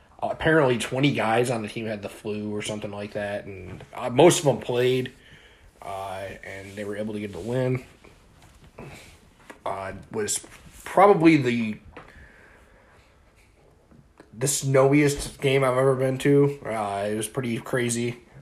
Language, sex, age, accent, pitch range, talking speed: English, male, 20-39, American, 105-130 Hz, 150 wpm